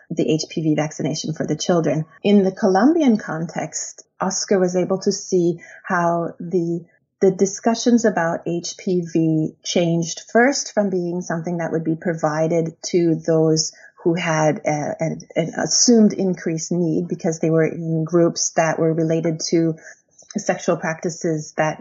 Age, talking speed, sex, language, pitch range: 30-49, 145 wpm, female, English, 160-190 Hz